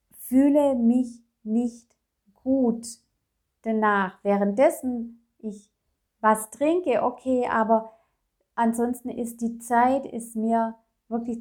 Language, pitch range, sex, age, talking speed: German, 220-260 Hz, female, 30-49, 95 wpm